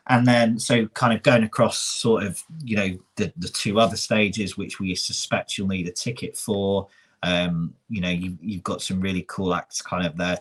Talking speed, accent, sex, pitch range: 215 wpm, British, male, 95-115 Hz